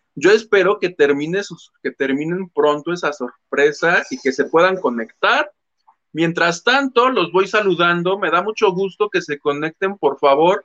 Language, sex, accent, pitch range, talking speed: Spanish, male, Mexican, 155-220 Hz, 165 wpm